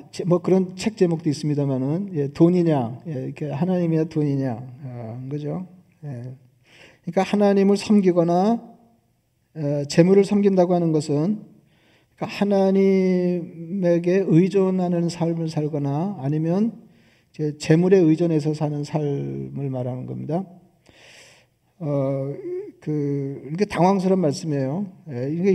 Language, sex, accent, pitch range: Korean, male, native, 145-180 Hz